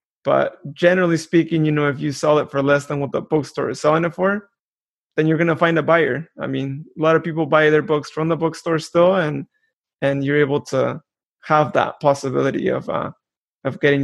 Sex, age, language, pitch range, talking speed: male, 20-39, English, 145-165 Hz, 220 wpm